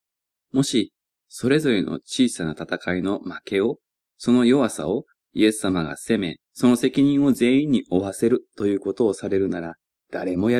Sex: male